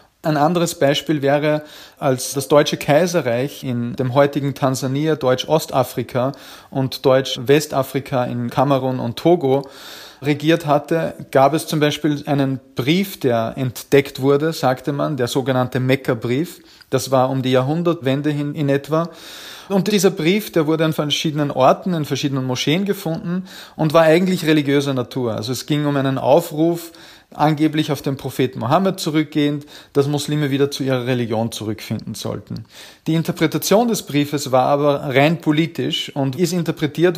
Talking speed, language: 145 wpm, German